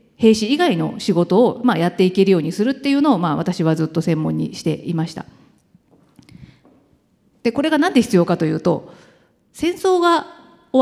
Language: Japanese